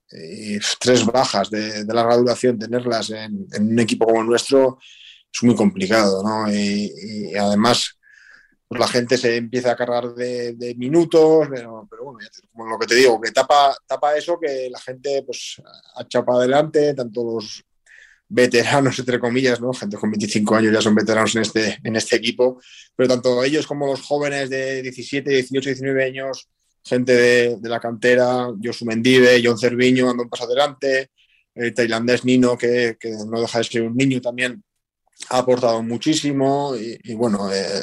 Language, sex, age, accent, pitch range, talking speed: Spanish, male, 20-39, Spanish, 115-125 Hz, 180 wpm